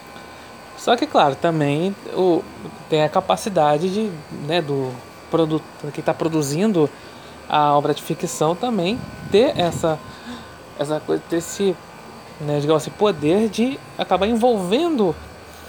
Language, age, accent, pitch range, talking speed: Portuguese, 20-39, Brazilian, 155-200 Hz, 120 wpm